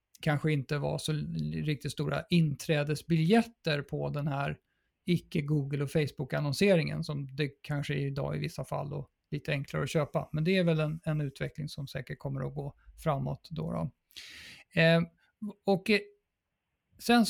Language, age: Swedish, 50-69